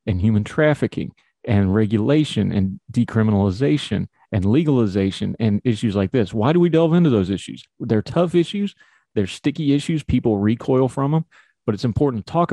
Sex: male